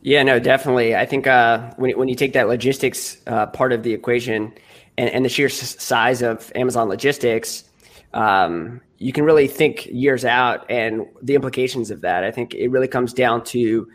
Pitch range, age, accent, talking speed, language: 120-135 Hz, 20-39, American, 190 wpm, English